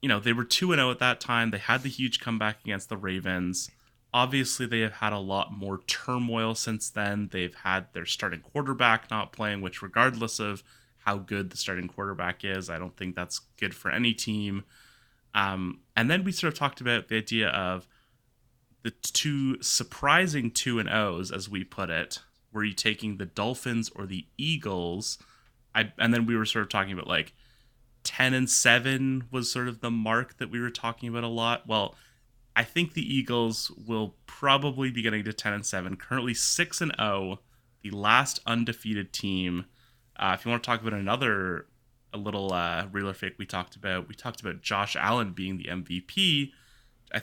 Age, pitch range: 30-49, 100-125 Hz